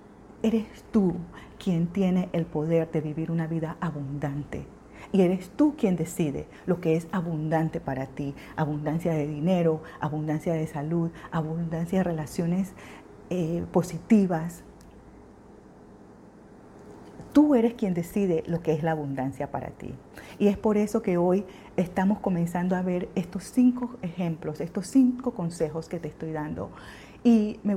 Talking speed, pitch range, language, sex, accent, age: 145 wpm, 160-200 Hz, Spanish, female, American, 40-59